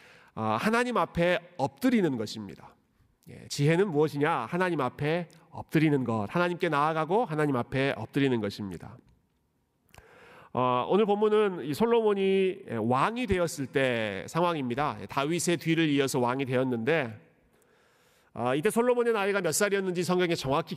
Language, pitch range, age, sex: Korean, 125-190 Hz, 40-59, male